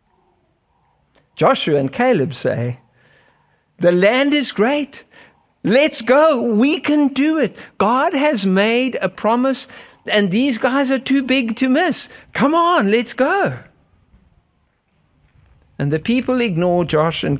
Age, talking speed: 60-79, 130 wpm